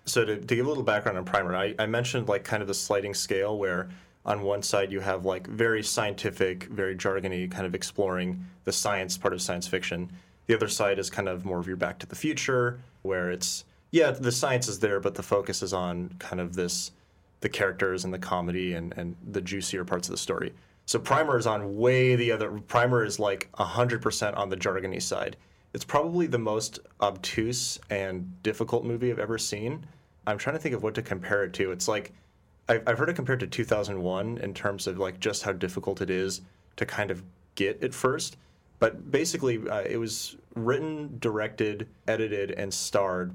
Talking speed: 205 wpm